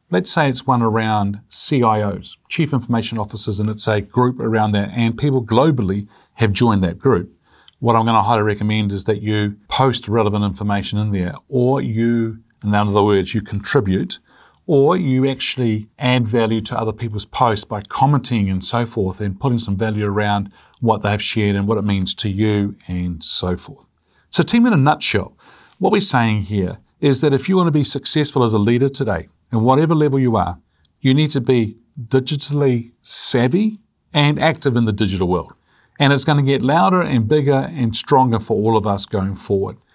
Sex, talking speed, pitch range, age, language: male, 190 wpm, 105-135 Hz, 40-59, English